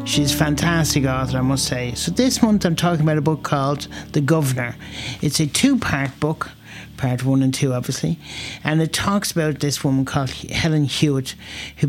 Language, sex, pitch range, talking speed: English, male, 130-150 Hz, 185 wpm